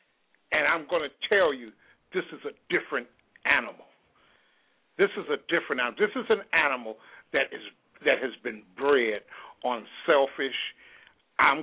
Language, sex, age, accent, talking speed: English, male, 60-79, American, 145 wpm